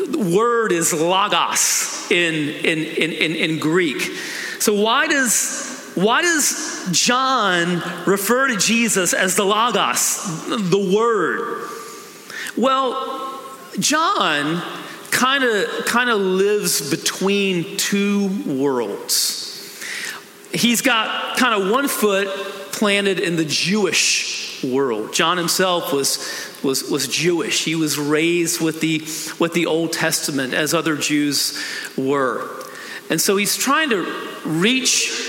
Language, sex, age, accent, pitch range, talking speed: English, male, 40-59, American, 170-250 Hz, 120 wpm